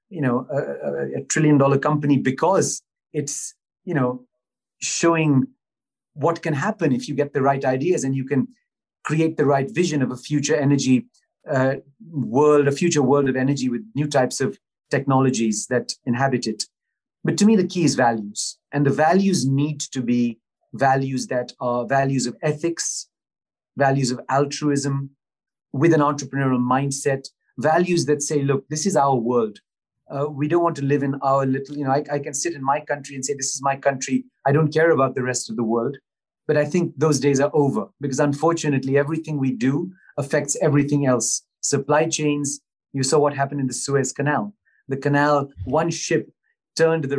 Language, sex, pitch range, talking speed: English, male, 130-150 Hz, 185 wpm